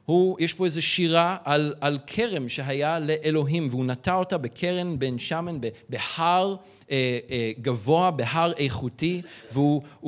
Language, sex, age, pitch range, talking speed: Hebrew, male, 40-59, 125-170 Hz, 130 wpm